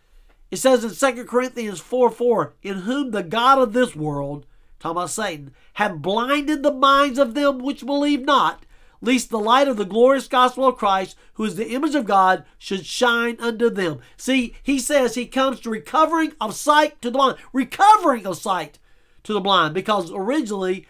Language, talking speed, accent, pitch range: English, 185 wpm, American, 195-270 Hz